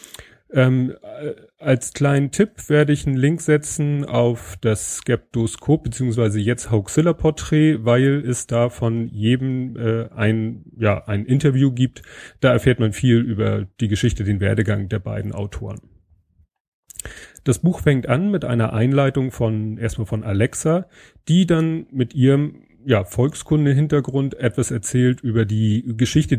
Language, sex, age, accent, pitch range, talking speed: German, male, 30-49, German, 110-135 Hz, 140 wpm